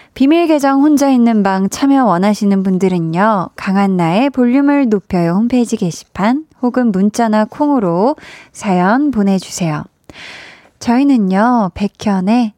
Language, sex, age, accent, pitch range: Korean, female, 20-39, native, 190-245 Hz